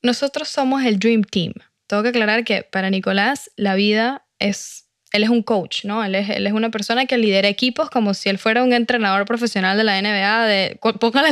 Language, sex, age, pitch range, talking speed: Spanish, female, 10-29, 195-245 Hz, 210 wpm